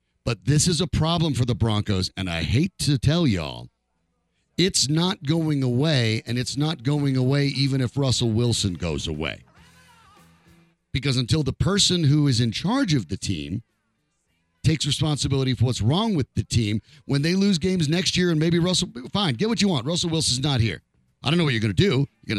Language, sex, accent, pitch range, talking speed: English, male, American, 110-160 Hz, 205 wpm